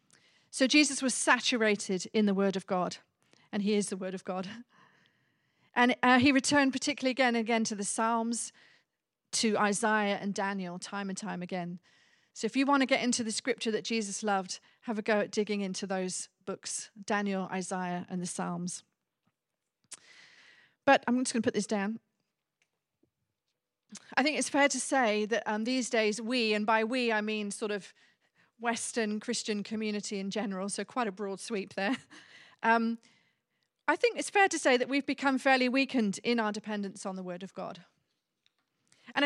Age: 40-59